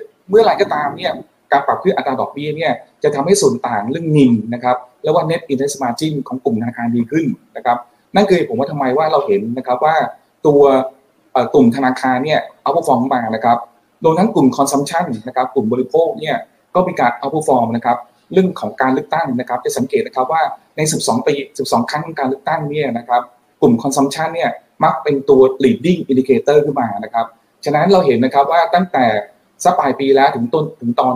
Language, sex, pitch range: Thai, male, 125-160 Hz